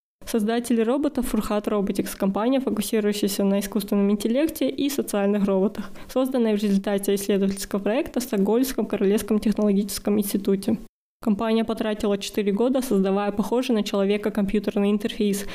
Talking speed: 125 wpm